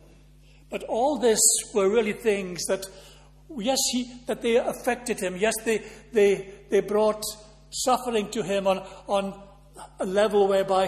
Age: 60-79